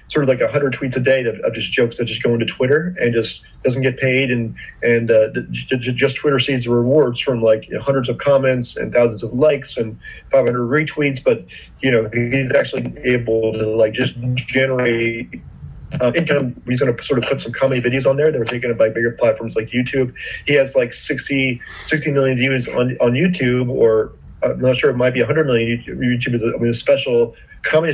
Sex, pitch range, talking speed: male, 120-140 Hz, 225 wpm